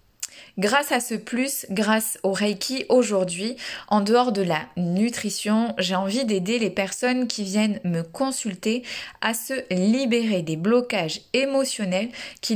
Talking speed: 140 wpm